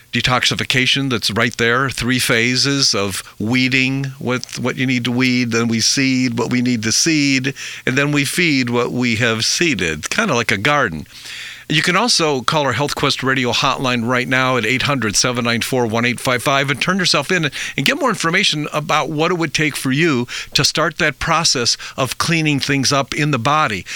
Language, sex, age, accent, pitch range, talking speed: English, male, 50-69, American, 120-145 Hz, 185 wpm